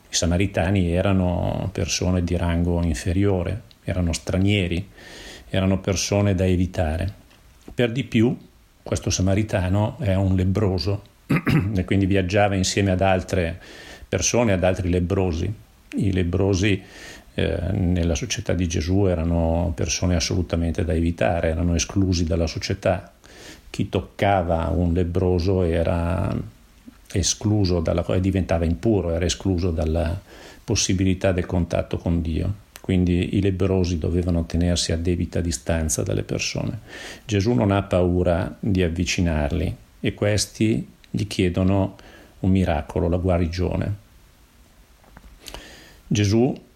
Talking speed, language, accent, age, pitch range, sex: 115 wpm, Italian, native, 50-69, 85-100 Hz, male